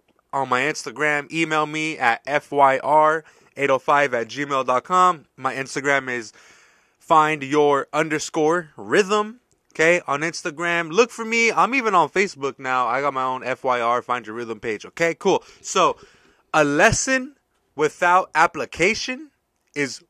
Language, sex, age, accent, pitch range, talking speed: English, male, 20-39, American, 140-205 Hz, 130 wpm